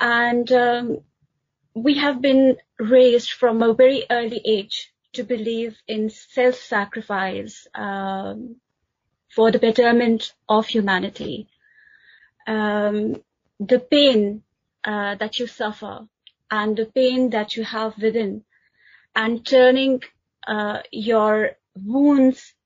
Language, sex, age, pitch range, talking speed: English, female, 30-49, 215-250 Hz, 105 wpm